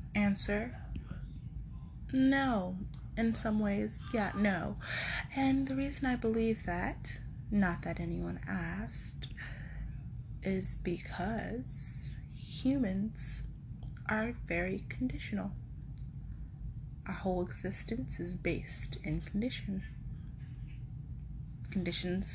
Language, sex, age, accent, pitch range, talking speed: English, female, 20-39, American, 135-215 Hz, 85 wpm